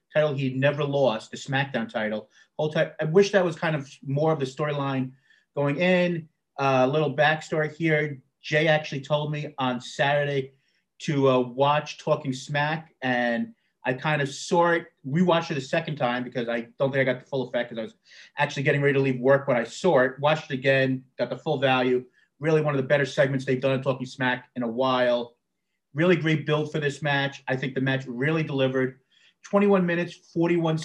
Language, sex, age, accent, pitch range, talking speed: English, male, 30-49, American, 135-155 Hz, 205 wpm